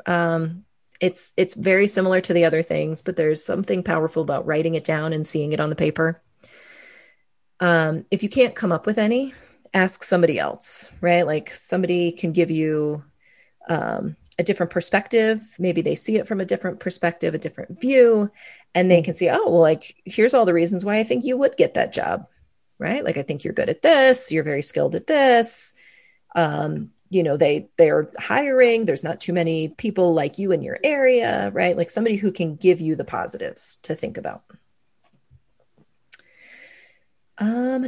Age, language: 30-49, English